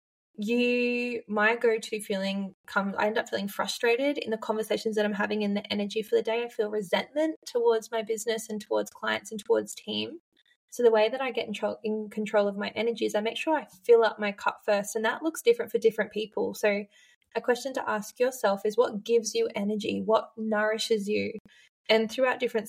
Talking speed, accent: 215 wpm, Australian